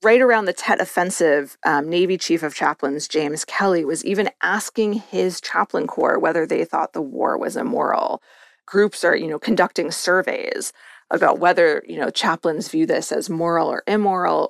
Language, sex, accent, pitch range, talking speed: English, female, American, 180-250 Hz, 175 wpm